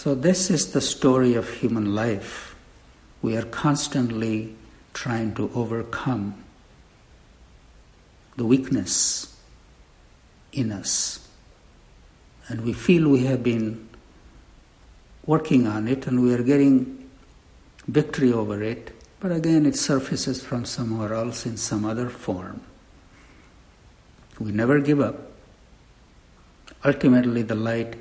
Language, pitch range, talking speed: English, 105-130 Hz, 110 wpm